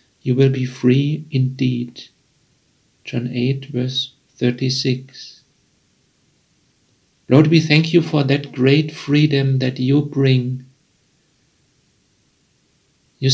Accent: German